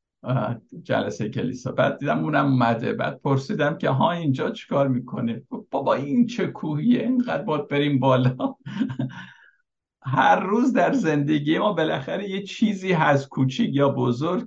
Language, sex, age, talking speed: Persian, male, 60-79, 135 wpm